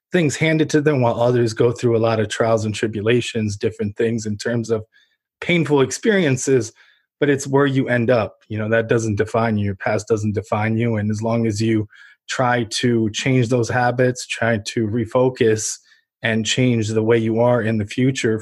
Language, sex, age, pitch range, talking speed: English, male, 20-39, 110-125 Hz, 195 wpm